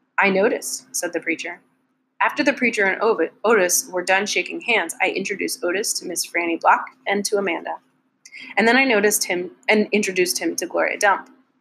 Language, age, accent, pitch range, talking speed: English, 30-49, American, 180-270 Hz, 180 wpm